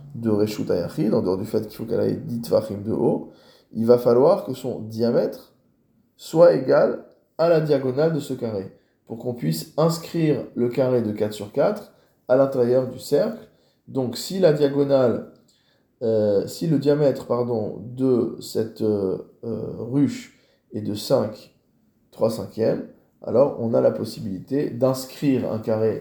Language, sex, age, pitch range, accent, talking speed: French, male, 20-39, 110-140 Hz, French, 155 wpm